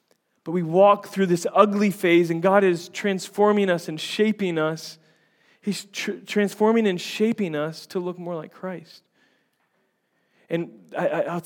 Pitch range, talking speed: 155-190 Hz, 155 wpm